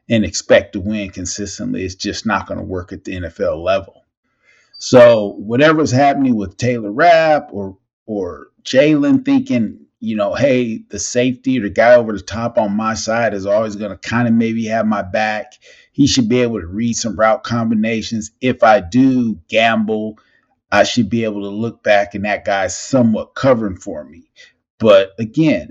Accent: American